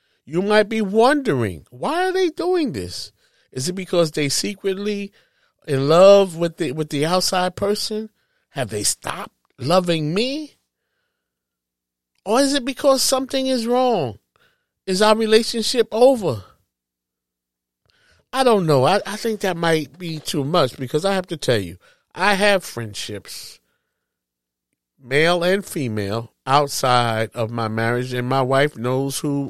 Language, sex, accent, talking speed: English, male, American, 140 wpm